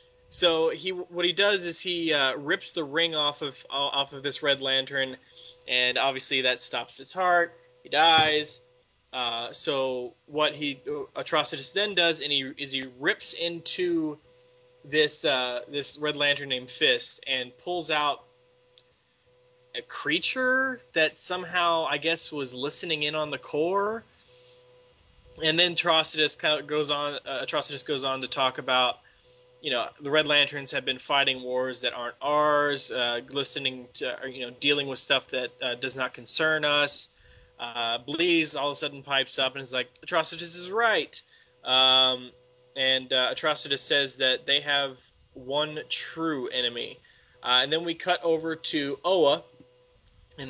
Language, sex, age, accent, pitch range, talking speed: English, male, 20-39, American, 125-160 Hz, 165 wpm